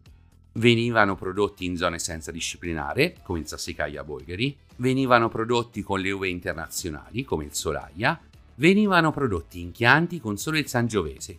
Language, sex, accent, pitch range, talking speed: Italian, male, native, 90-140 Hz, 135 wpm